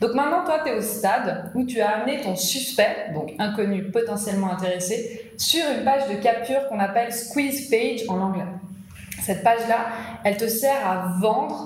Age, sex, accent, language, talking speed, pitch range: 20-39, female, French, French, 190 wpm, 200-240 Hz